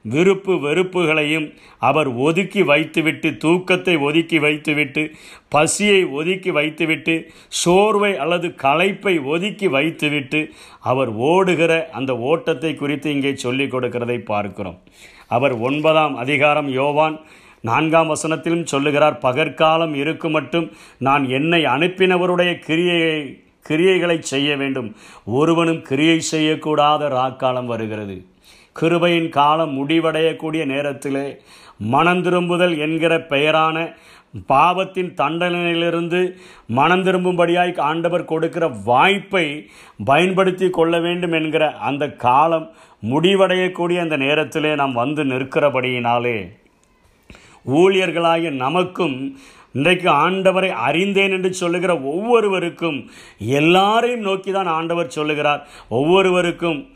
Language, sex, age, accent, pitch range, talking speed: Tamil, male, 50-69, native, 145-175 Hz, 90 wpm